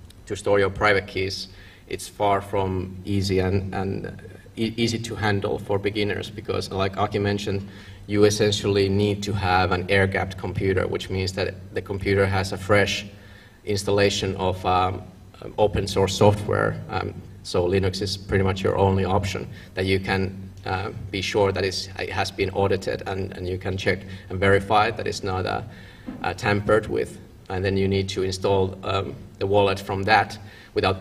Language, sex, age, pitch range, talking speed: Finnish, male, 30-49, 95-100 Hz, 175 wpm